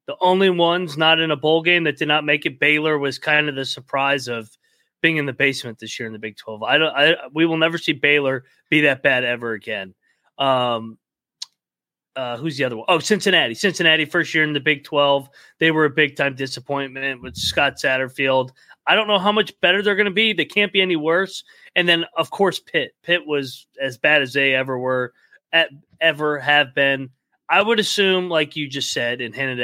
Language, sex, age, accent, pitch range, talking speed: English, male, 30-49, American, 135-175 Hz, 215 wpm